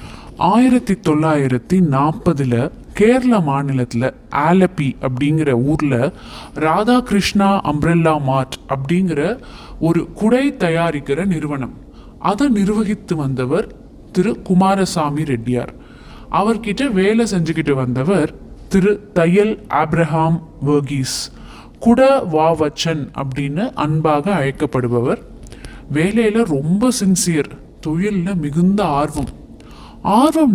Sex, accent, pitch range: male, native, 145-200 Hz